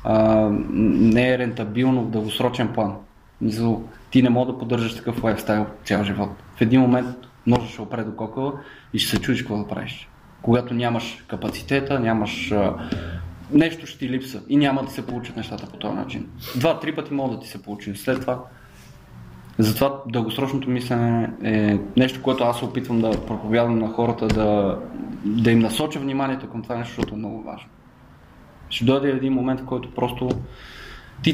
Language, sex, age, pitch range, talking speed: Bulgarian, male, 20-39, 110-130 Hz, 170 wpm